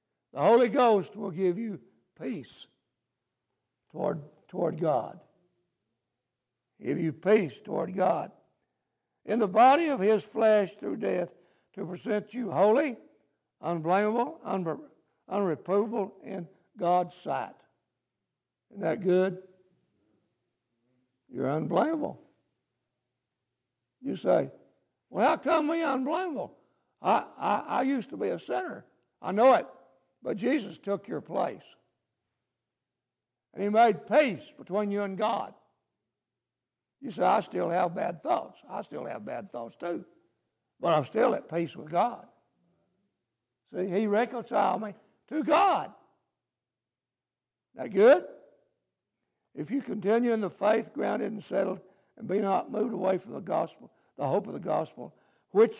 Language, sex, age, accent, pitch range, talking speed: English, male, 60-79, American, 165-220 Hz, 130 wpm